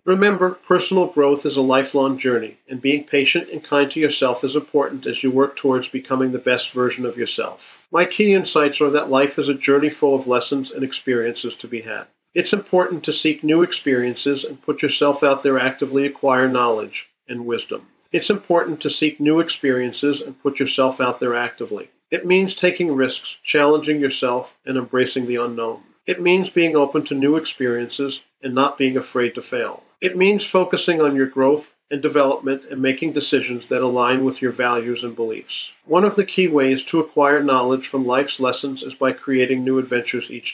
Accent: American